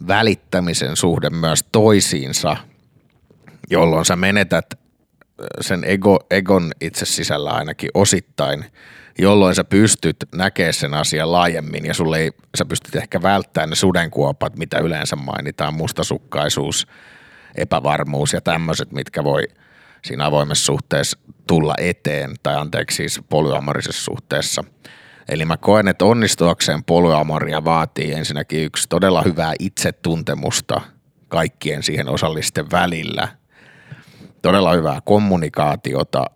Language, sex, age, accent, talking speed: Finnish, male, 50-69, native, 110 wpm